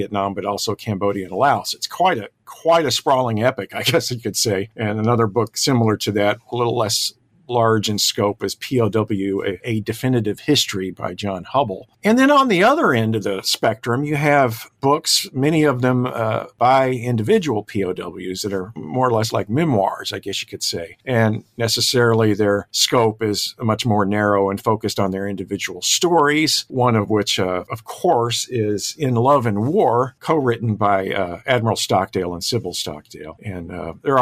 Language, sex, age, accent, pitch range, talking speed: English, male, 50-69, American, 105-135 Hz, 185 wpm